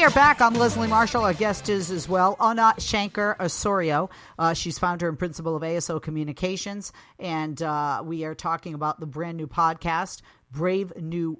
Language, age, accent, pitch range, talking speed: English, 40-59, American, 160-195 Hz, 180 wpm